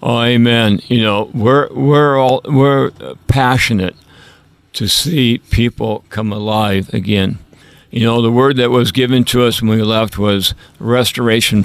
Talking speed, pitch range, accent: 150 wpm, 105-120 Hz, American